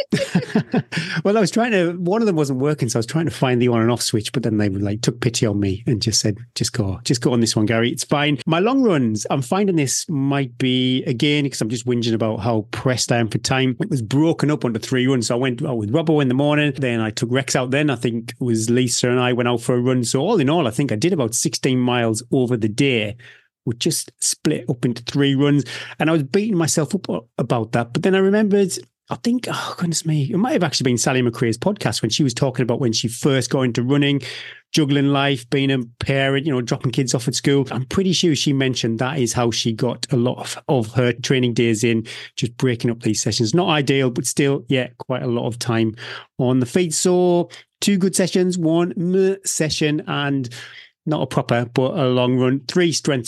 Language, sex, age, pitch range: English, male, 30-49, 120-150 Hz